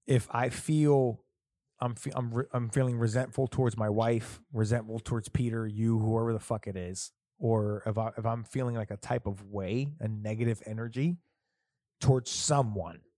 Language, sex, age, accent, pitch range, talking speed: English, male, 20-39, American, 110-130 Hz, 175 wpm